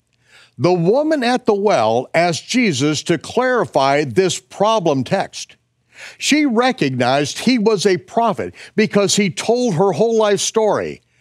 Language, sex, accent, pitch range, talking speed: English, male, American, 155-230 Hz, 135 wpm